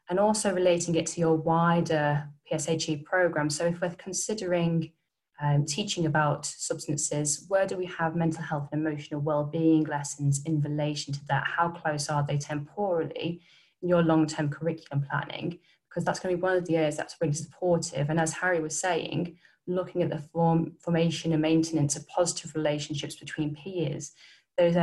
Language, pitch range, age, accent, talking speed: English, 150-170 Hz, 10-29, British, 170 wpm